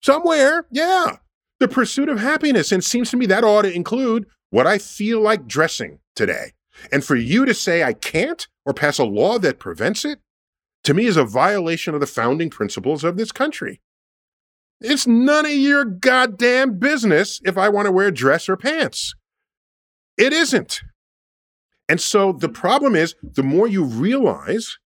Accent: American